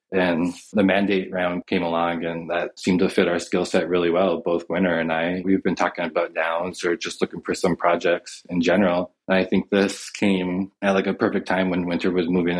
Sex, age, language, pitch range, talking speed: male, 20-39, English, 85-95 Hz, 220 wpm